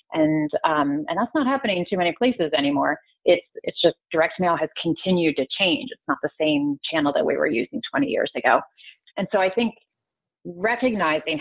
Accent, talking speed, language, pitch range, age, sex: American, 195 wpm, English, 155-200 Hz, 30-49, female